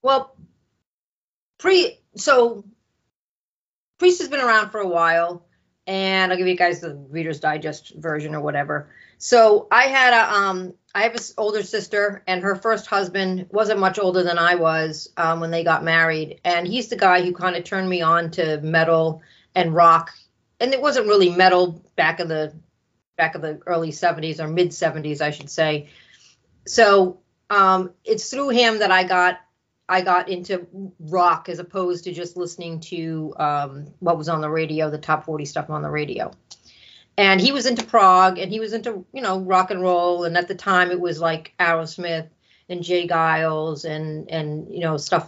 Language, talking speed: English, 185 wpm